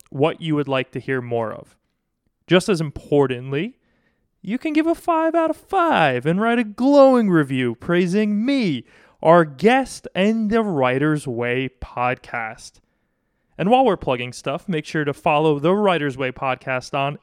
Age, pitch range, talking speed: 20-39, 135-205 Hz, 165 wpm